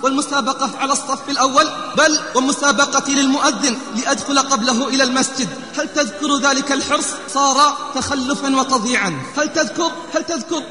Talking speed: 120 wpm